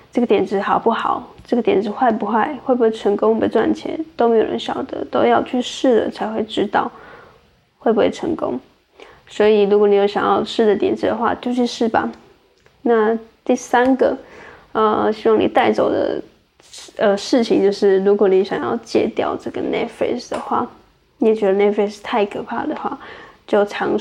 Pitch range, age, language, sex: 205-255 Hz, 10-29, English, female